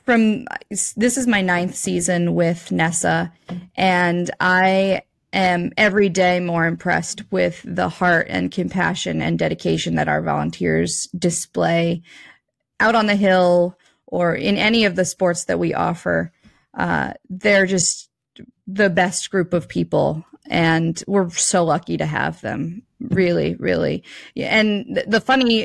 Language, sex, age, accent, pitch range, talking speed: English, female, 20-39, American, 170-205 Hz, 140 wpm